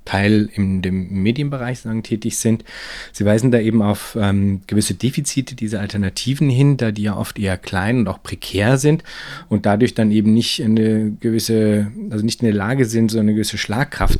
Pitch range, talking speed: 100-120 Hz, 190 wpm